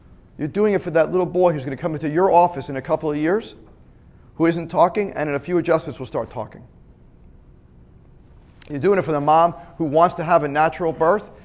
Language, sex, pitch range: English, male, 140-175 Hz